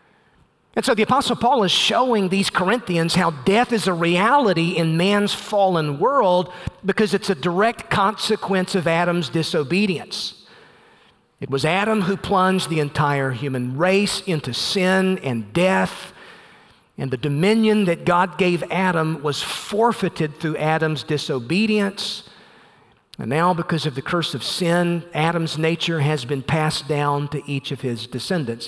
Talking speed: 145 wpm